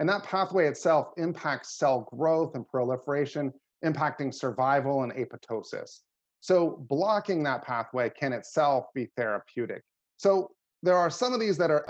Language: English